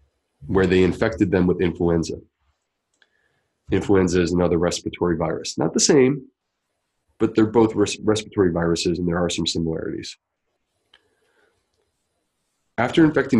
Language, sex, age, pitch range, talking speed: English, male, 30-49, 90-110 Hz, 120 wpm